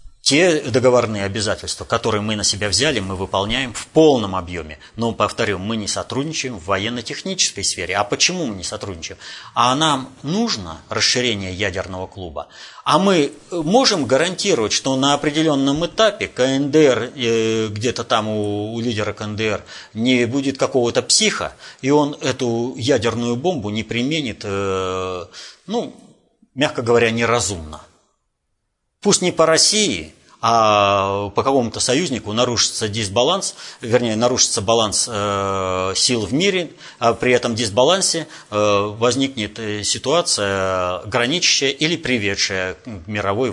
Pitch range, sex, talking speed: 100-135 Hz, male, 125 wpm